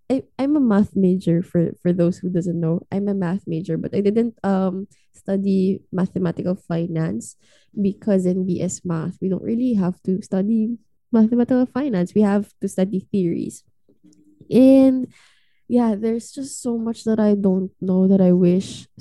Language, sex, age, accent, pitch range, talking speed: English, female, 20-39, Filipino, 180-220 Hz, 165 wpm